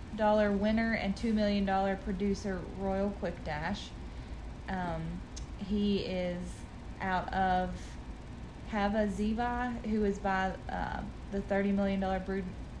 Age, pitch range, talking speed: 30-49, 190-210 Hz, 110 wpm